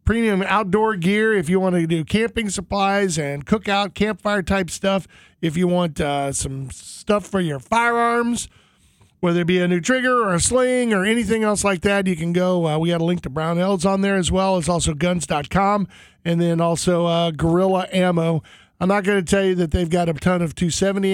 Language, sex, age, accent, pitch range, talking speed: English, male, 40-59, American, 165-200 Hz, 205 wpm